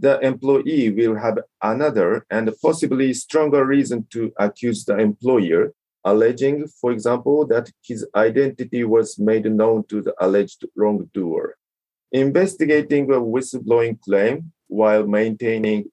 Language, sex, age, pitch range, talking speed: English, male, 40-59, 110-135 Hz, 120 wpm